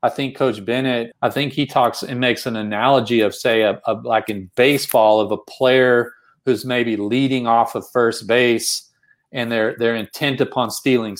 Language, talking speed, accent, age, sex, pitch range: English, 190 wpm, American, 40-59, male, 115-140 Hz